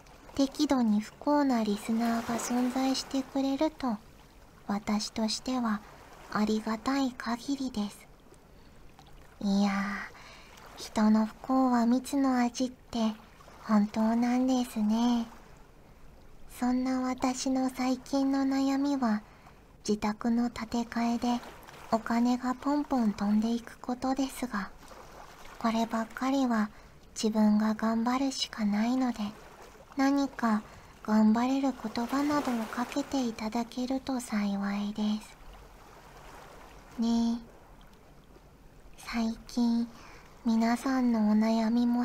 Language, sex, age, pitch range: Japanese, male, 40-59, 220-255 Hz